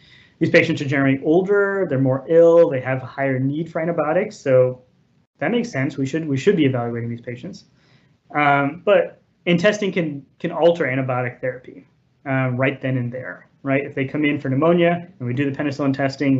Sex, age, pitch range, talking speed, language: male, 30-49, 130-170 Hz, 200 wpm, English